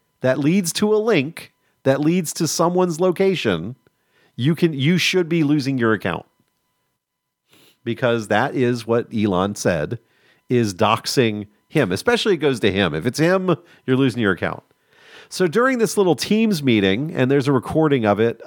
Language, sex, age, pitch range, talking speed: English, male, 40-59, 105-160 Hz, 165 wpm